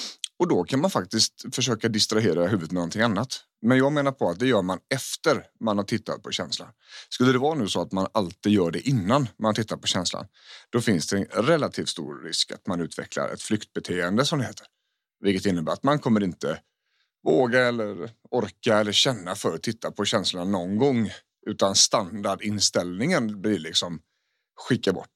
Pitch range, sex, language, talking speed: 105-145 Hz, male, English, 185 wpm